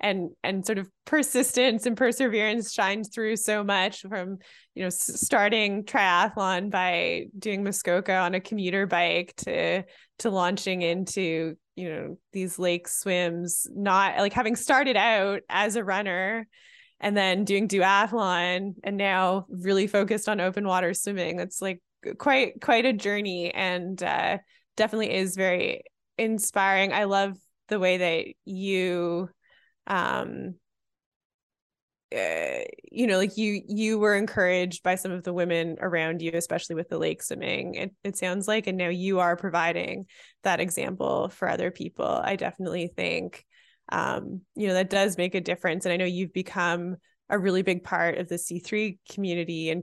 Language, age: English, 20-39